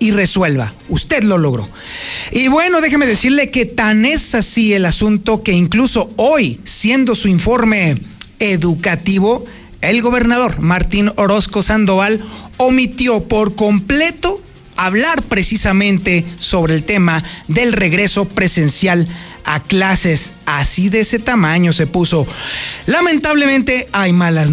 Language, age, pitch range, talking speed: Spanish, 40-59, 175-235 Hz, 120 wpm